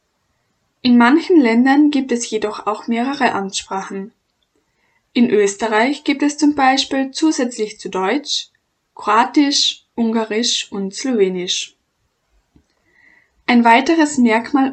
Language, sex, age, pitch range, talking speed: German, female, 10-29, 210-280 Hz, 100 wpm